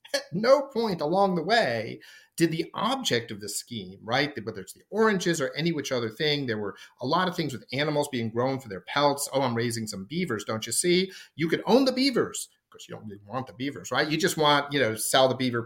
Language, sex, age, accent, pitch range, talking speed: English, male, 50-69, American, 120-195 Hz, 245 wpm